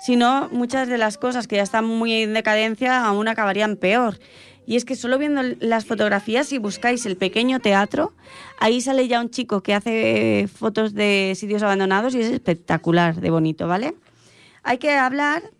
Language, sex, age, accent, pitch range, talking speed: Italian, female, 20-39, Spanish, 185-255 Hz, 180 wpm